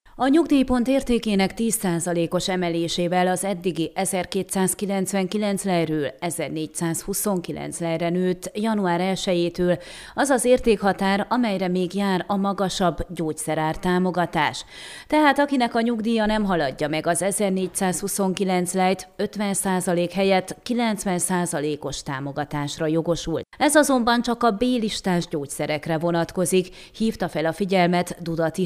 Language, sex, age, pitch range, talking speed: Hungarian, female, 30-49, 170-210 Hz, 105 wpm